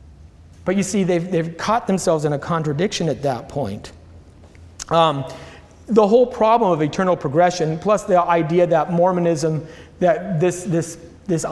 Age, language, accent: 40-59, English, American